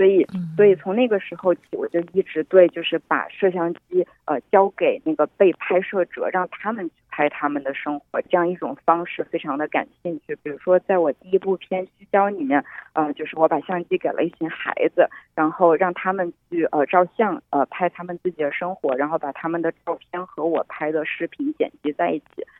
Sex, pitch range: female, 160-200 Hz